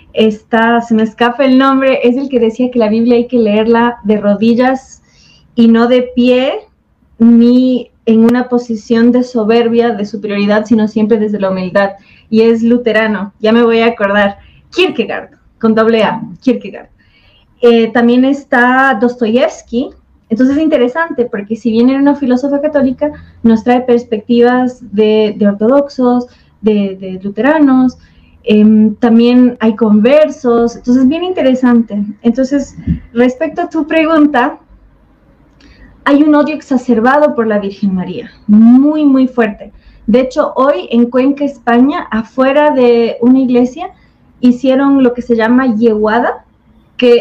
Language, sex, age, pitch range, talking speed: Spanish, female, 20-39, 225-260 Hz, 140 wpm